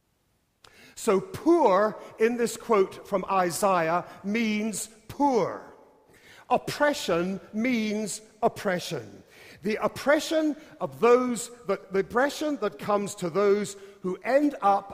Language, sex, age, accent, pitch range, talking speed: English, male, 50-69, British, 165-220 Hz, 100 wpm